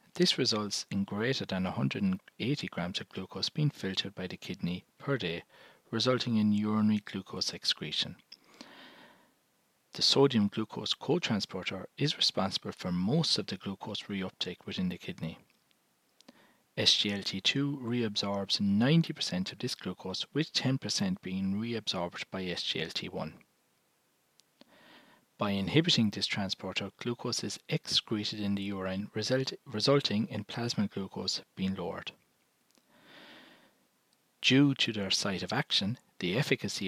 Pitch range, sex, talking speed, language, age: 95-125 Hz, male, 120 wpm, English, 40-59